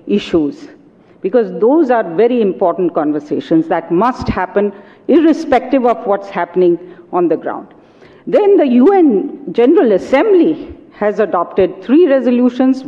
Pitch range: 190-315 Hz